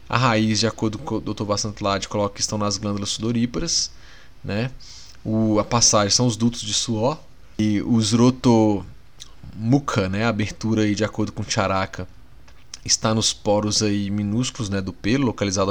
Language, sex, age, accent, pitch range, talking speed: Portuguese, male, 20-39, Brazilian, 100-120 Hz, 170 wpm